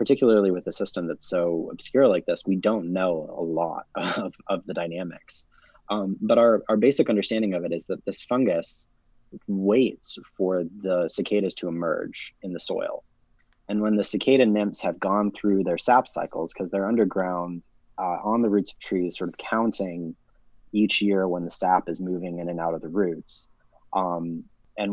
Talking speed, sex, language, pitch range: 185 wpm, male, English, 90-105 Hz